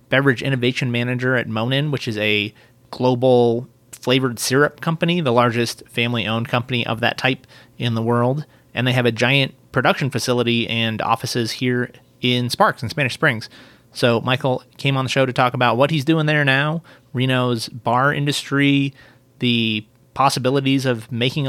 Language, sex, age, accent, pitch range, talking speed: English, male, 30-49, American, 120-140 Hz, 165 wpm